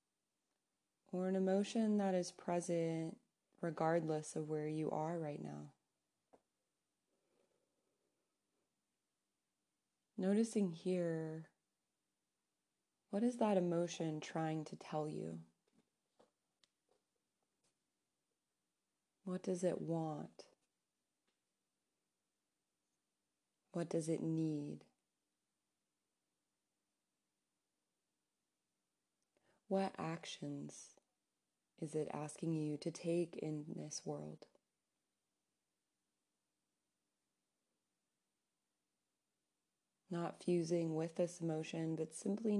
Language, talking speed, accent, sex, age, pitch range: English, 70 wpm, American, female, 30-49, 160-185 Hz